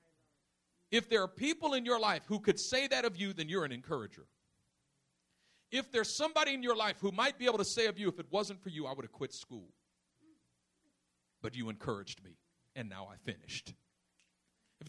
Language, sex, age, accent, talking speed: English, male, 50-69, American, 200 wpm